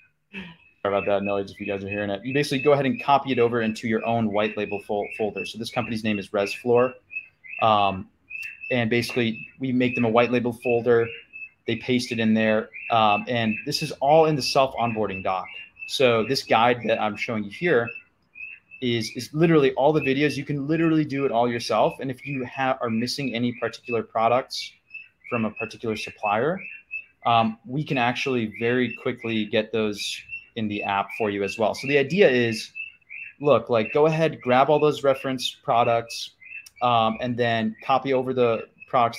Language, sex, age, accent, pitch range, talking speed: English, male, 20-39, American, 110-130 Hz, 185 wpm